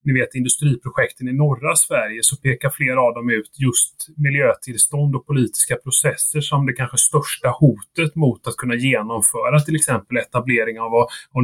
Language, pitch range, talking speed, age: Swedish, 125-150 Hz, 165 wpm, 30-49